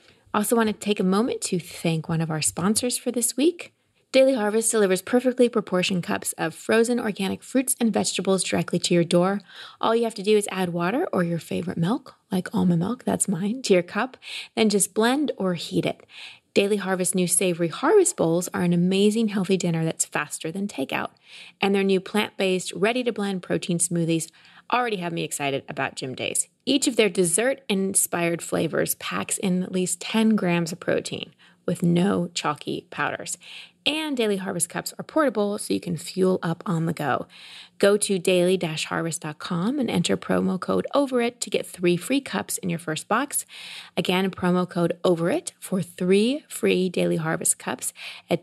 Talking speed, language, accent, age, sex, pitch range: 180 wpm, English, American, 20-39, female, 175-225 Hz